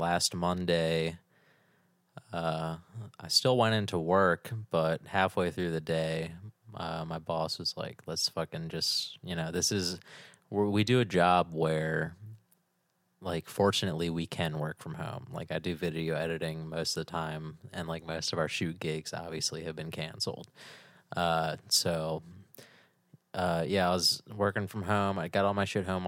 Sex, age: male, 20-39